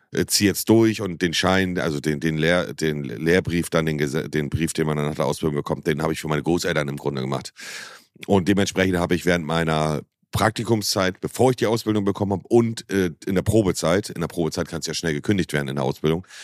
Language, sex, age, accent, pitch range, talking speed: German, male, 40-59, German, 80-100 Hz, 225 wpm